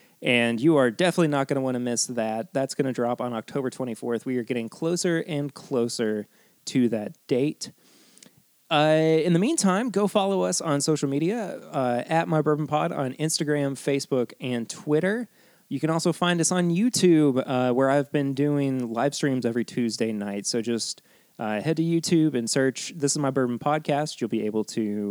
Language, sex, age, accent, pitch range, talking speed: English, male, 20-39, American, 120-165 Hz, 195 wpm